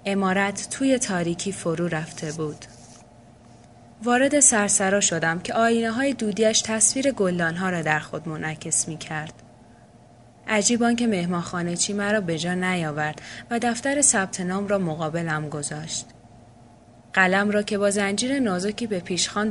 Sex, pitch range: female, 155-205 Hz